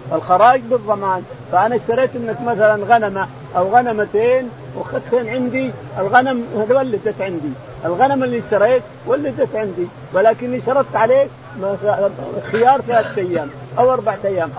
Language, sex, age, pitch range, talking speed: Arabic, male, 50-69, 170-245 Hz, 115 wpm